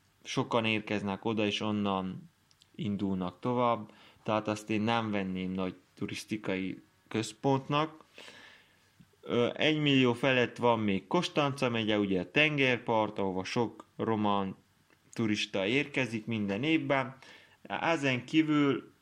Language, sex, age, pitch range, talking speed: Hungarian, male, 20-39, 100-130 Hz, 105 wpm